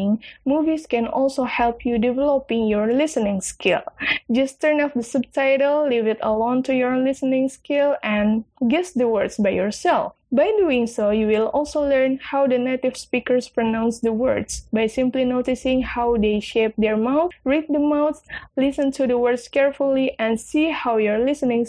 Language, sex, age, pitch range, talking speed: English, female, 10-29, 225-285 Hz, 170 wpm